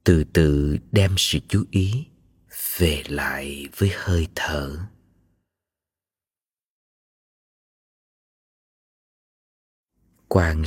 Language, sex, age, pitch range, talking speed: Vietnamese, male, 20-39, 85-100 Hz, 65 wpm